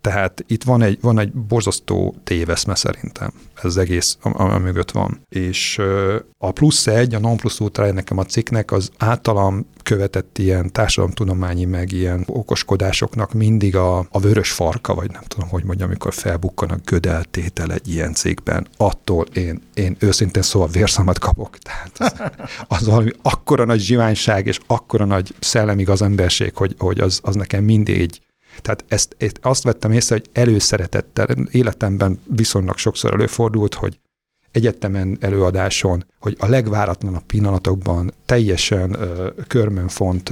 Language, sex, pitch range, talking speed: Hungarian, male, 90-110 Hz, 145 wpm